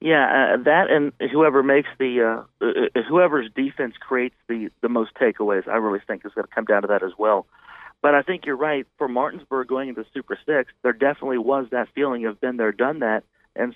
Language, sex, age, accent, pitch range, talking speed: English, male, 40-59, American, 115-140 Hz, 215 wpm